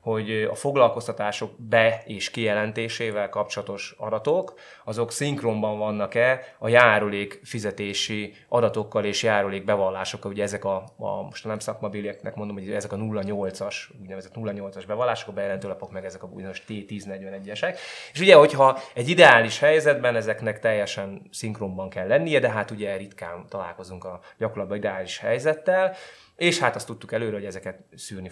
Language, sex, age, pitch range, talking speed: Hungarian, male, 20-39, 100-120 Hz, 140 wpm